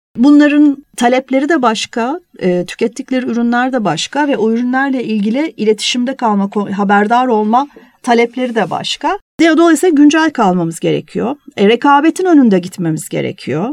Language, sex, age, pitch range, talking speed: Turkish, female, 40-59, 205-280 Hz, 125 wpm